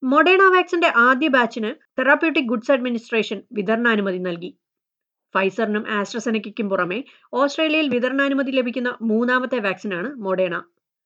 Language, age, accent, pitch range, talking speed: Malayalam, 30-49, native, 200-275 Hz, 100 wpm